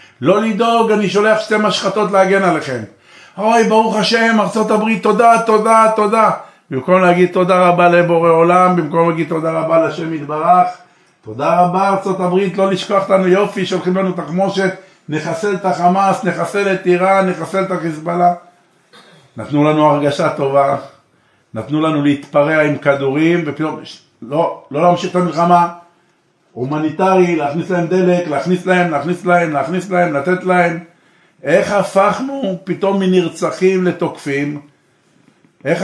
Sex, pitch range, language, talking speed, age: male, 165-190 Hz, Hebrew, 135 wpm, 60-79